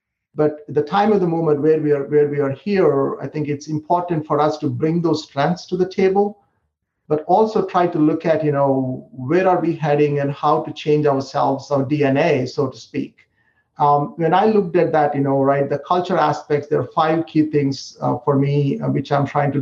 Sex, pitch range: male, 140-170 Hz